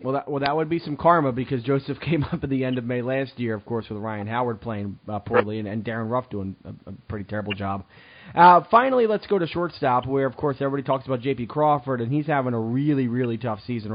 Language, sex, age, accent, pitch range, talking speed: English, male, 20-39, American, 120-150 Hz, 250 wpm